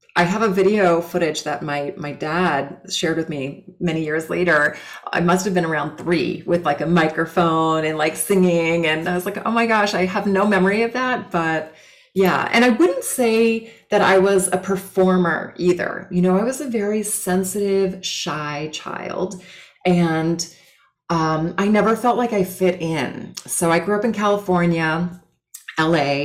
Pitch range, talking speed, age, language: 160-195 Hz, 180 wpm, 30-49, English